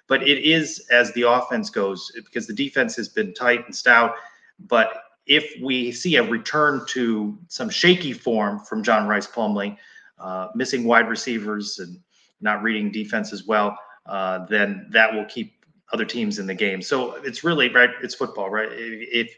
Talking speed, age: 175 wpm, 30-49